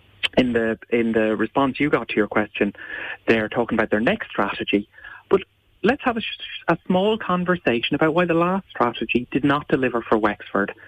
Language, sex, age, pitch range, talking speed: English, male, 30-49, 110-160 Hz, 190 wpm